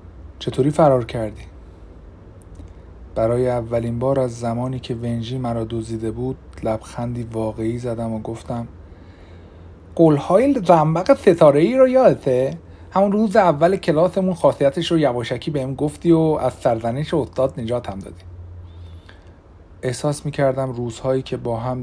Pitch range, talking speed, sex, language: 90-140 Hz, 130 wpm, male, Persian